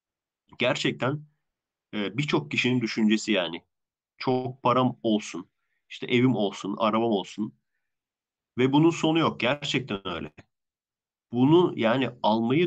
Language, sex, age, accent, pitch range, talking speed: Turkish, male, 40-59, native, 115-155 Hz, 110 wpm